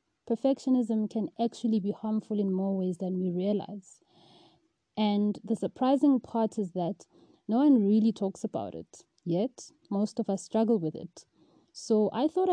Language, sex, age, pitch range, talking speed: English, female, 20-39, 195-230 Hz, 160 wpm